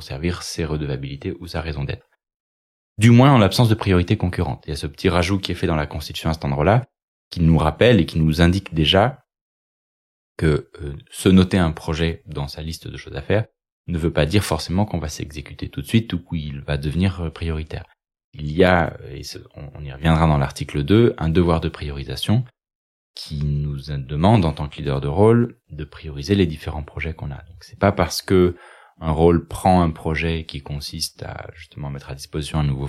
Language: French